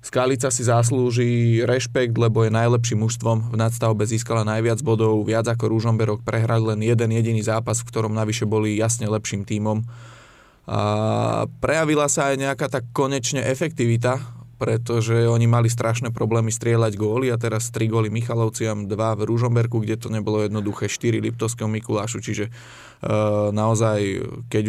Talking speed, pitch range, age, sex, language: 150 wpm, 110-120 Hz, 20-39, male, Slovak